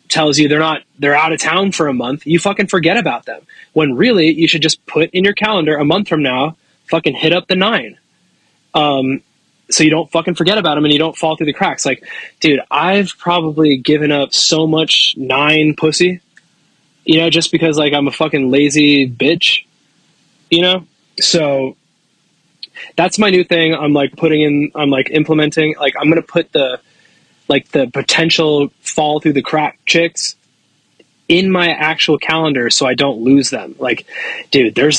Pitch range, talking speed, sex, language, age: 140-165 Hz, 185 wpm, male, English, 20-39